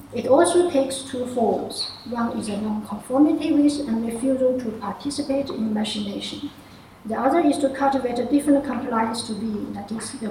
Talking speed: 170 wpm